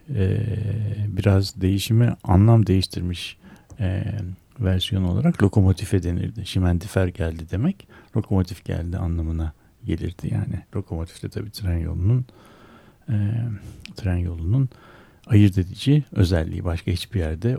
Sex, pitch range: male, 90-120 Hz